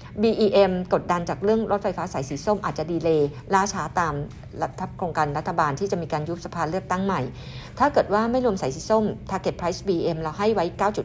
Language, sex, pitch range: Thai, female, 155-195 Hz